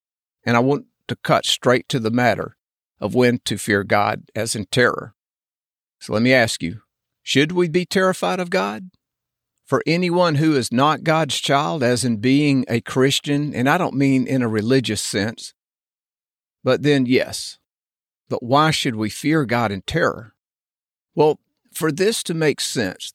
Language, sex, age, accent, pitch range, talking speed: English, male, 50-69, American, 120-160 Hz, 170 wpm